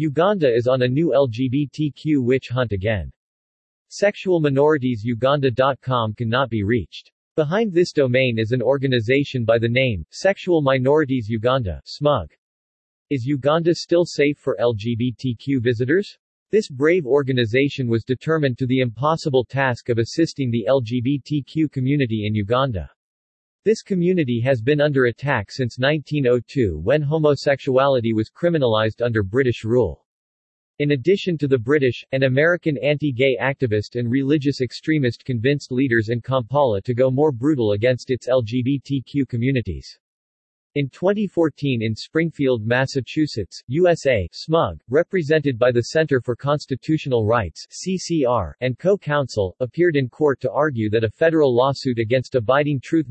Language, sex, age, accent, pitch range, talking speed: English, male, 50-69, American, 120-145 Hz, 130 wpm